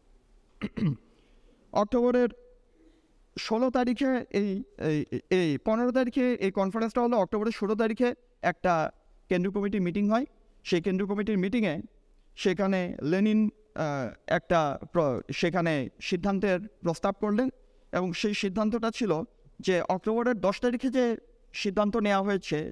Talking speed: 105 wpm